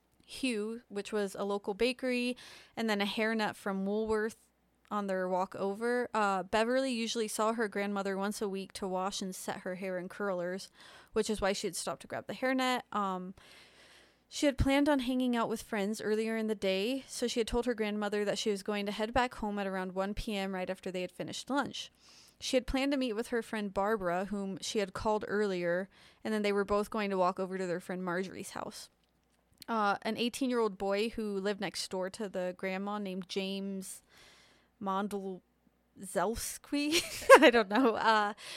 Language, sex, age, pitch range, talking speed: English, female, 20-39, 190-230 Hz, 195 wpm